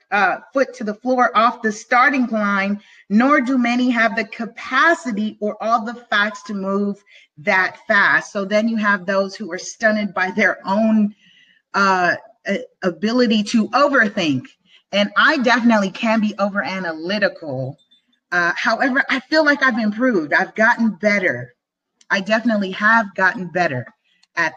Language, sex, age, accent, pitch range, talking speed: English, female, 30-49, American, 190-240 Hz, 150 wpm